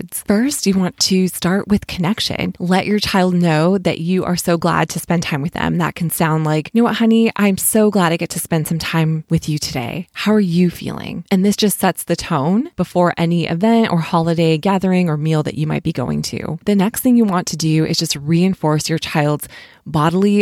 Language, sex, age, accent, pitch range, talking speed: English, female, 20-39, American, 160-190 Hz, 230 wpm